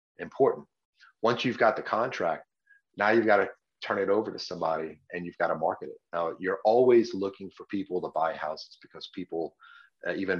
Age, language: 30-49, English